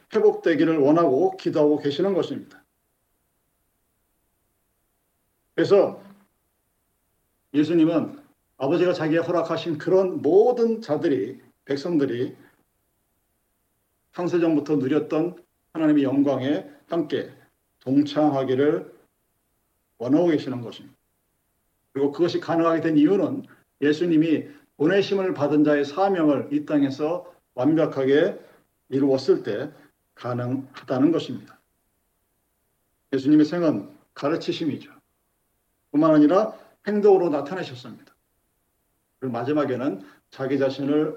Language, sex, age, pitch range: Korean, male, 50-69, 130-165 Hz